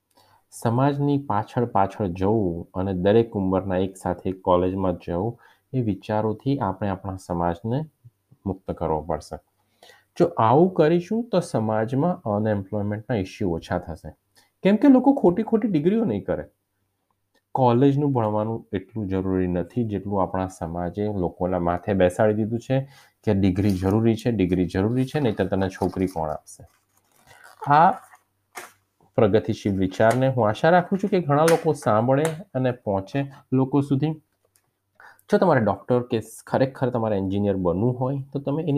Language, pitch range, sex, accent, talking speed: Gujarati, 90-130 Hz, male, native, 105 wpm